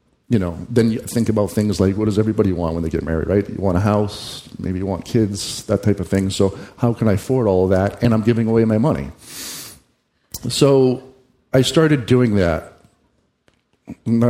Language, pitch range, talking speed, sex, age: English, 100-125 Hz, 200 wpm, male, 50-69